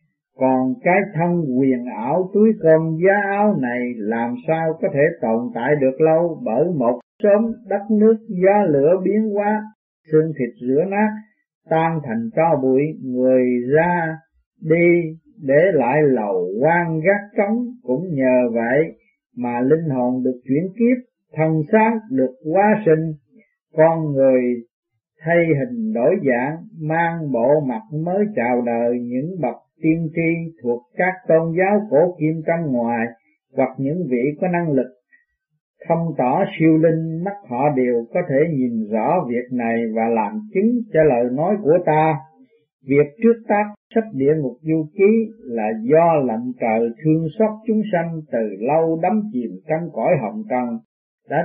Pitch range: 130-200 Hz